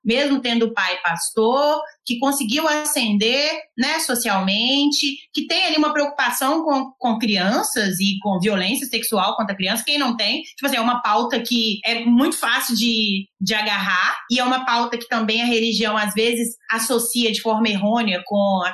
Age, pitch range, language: 20-39, 210-295 Hz, Portuguese